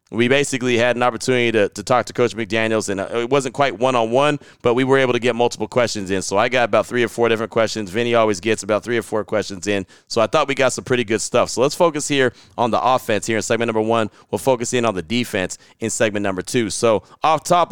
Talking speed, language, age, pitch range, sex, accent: 260 wpm, English, 30-49, 110-130 Hz, male, American